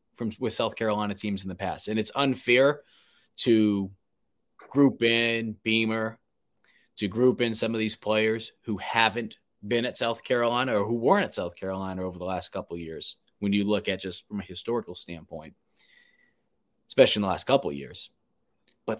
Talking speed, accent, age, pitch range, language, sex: 180 wpm, American, 20-39, 105-130 Hz, English, male